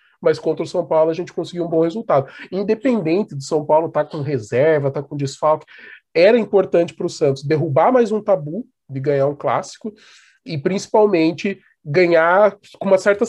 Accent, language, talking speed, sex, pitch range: Brazilian, Portuguese, 190 wpm, male, 150-200 Hz